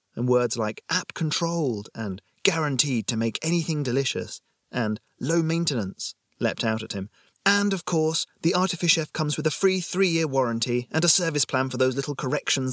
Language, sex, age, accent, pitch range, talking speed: English, male, 30-49, British, 105-135 Hz, 170 wpm